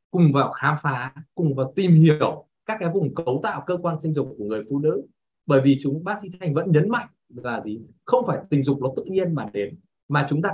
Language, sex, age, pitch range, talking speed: Vietnamese, male, 20-39, 140-195 Hz, 250 wpm